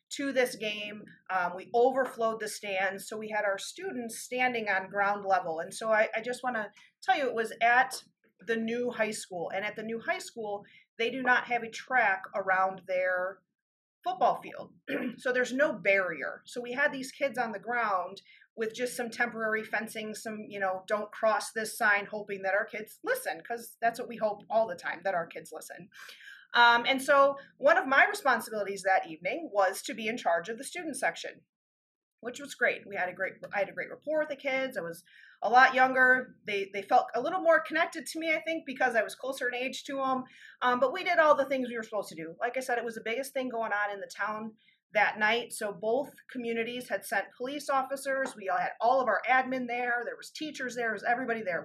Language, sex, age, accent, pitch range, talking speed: English, female, 30-49, American, 210-260 Hz, 230 wpm